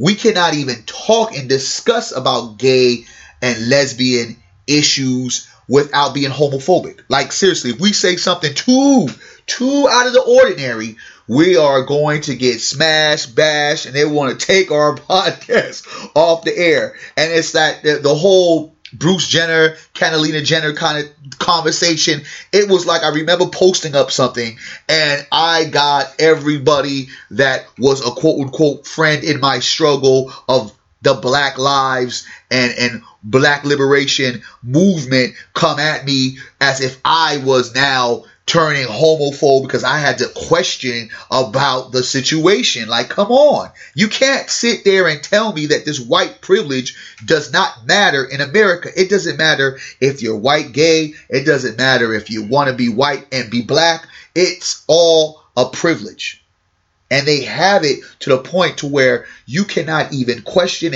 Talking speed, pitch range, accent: 155 wpm, 130-165 Hz, American